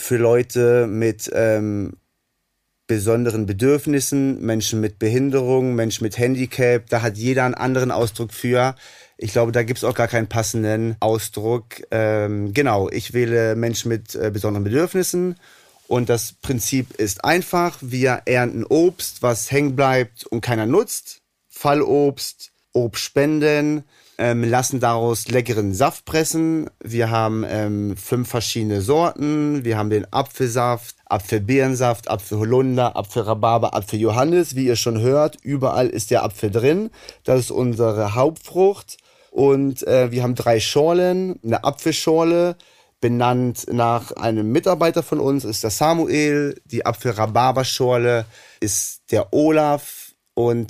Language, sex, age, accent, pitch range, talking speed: German, male, 30-49, German, 110-140 Hz, 130 wpm